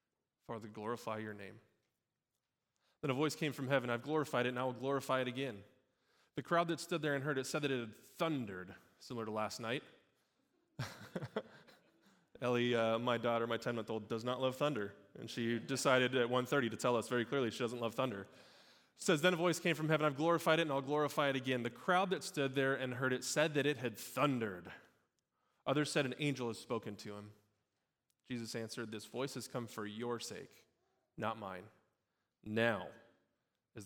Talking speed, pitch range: 195 wpm, 115-145 Hz